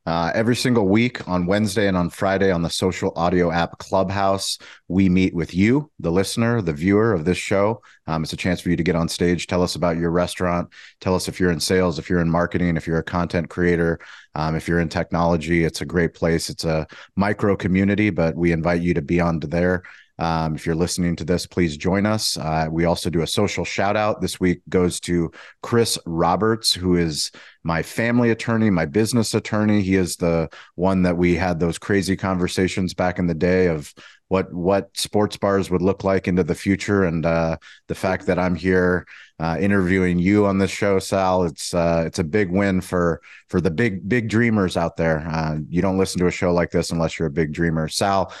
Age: 30-49